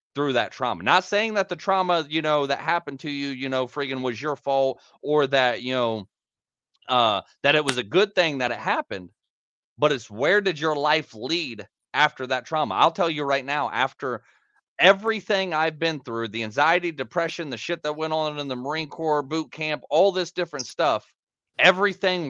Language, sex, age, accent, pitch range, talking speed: English, male, 30-49, American, 135-175 Hz, 195 wpm